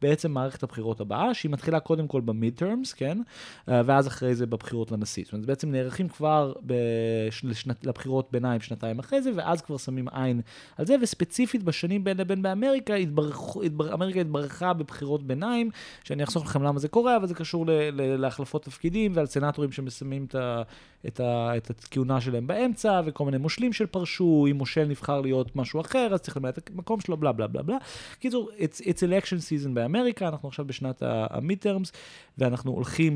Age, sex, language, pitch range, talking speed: 30-49, male, Hebrew, 125-180 Hz, 175 wpm